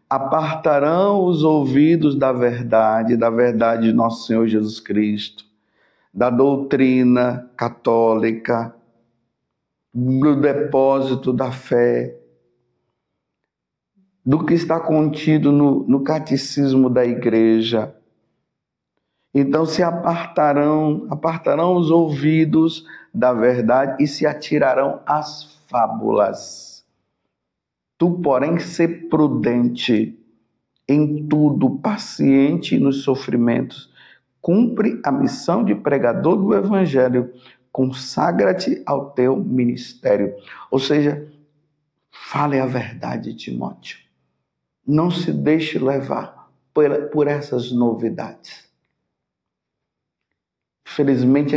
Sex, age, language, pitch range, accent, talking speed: male, 50-69, Portuguese, 120-155 Hz, Brazilian, 85 wpm